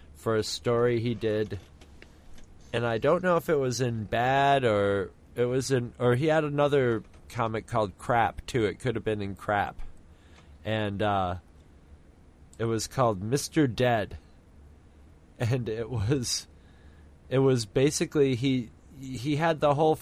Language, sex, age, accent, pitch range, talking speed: English, male, 30-49, American, 85-120 Hz, 150 wpm